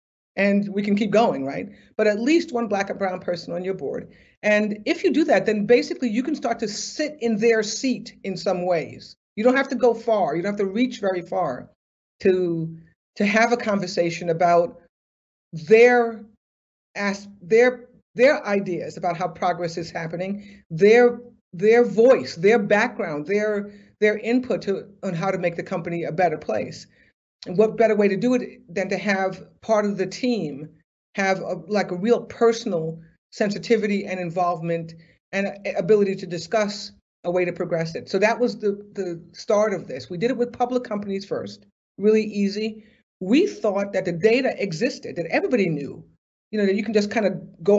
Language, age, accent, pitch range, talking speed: English, 50-69, American, 180-225 Hz, 185 wpm